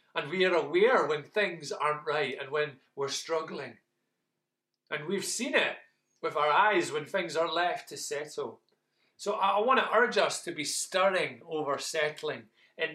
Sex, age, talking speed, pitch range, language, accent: male, 30-49, 170 wpm, 140-180 Hz, English, British